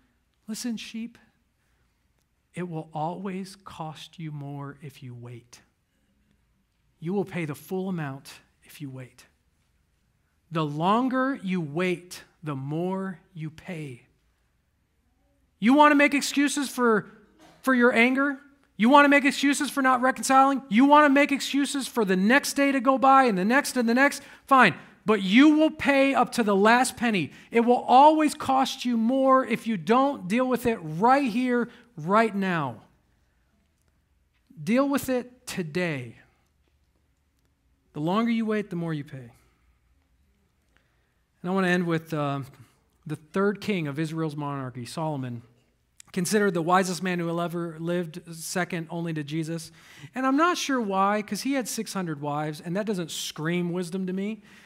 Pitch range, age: 145-245 Hz, 40-59